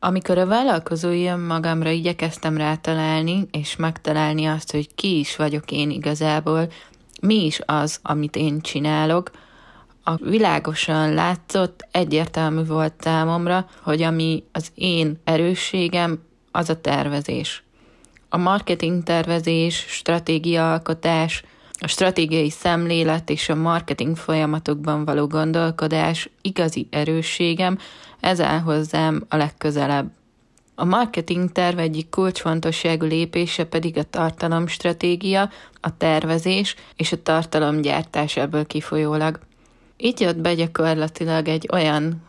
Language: Hungarian